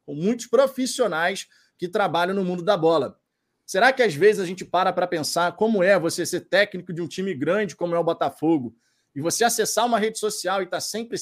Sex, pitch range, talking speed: male, 170-220 Hz, 215 wpm